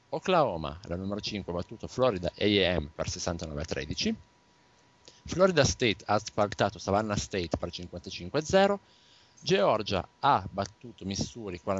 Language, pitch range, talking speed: Italian, 95-125 Hz, 110 wpm